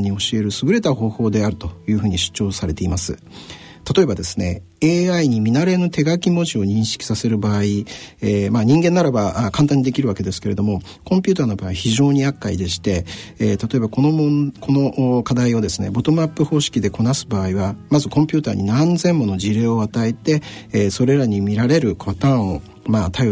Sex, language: male, Japanese